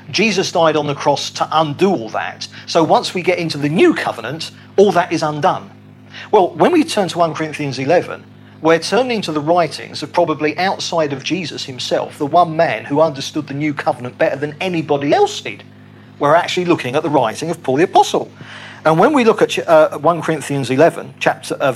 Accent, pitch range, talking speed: British, 125-170 Hz, 200 wpm